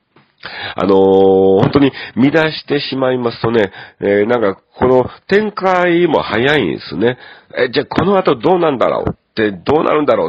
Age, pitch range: 40-59, 85-115 Hz